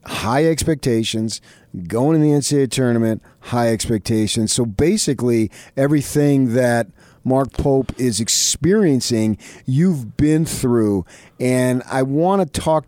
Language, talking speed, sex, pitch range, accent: English, 115 wpm, male, 110-145 Hz, American